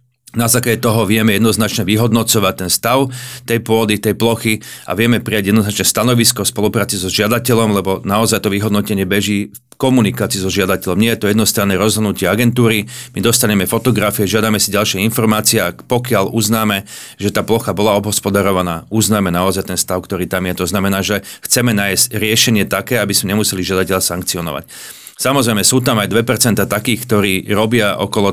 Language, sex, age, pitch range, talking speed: Slovak, male, 40-59, 100-115 Hz, 165 wpm